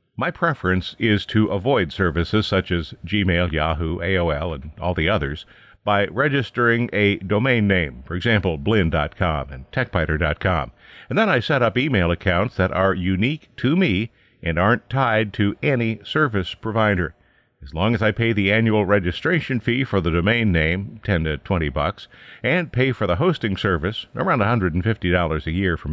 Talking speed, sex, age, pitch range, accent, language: 175 wpm, male, 50-69, 85-120 Hz, American, English